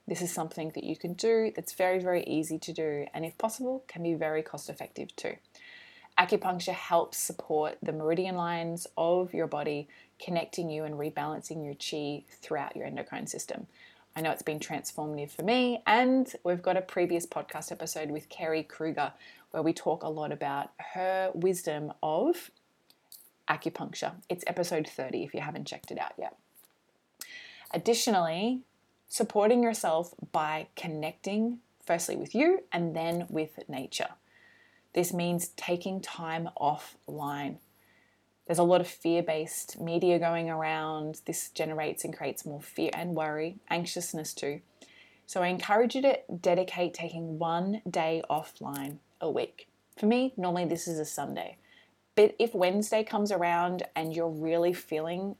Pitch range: 155-185 Hz